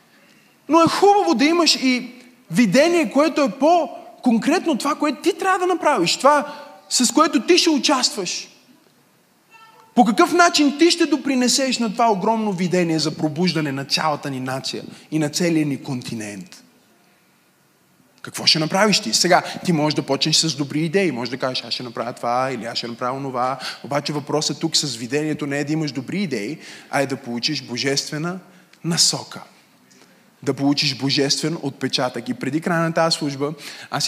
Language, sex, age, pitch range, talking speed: Bulgarian, male, 20-39, 135-220 Hz, 165 wpm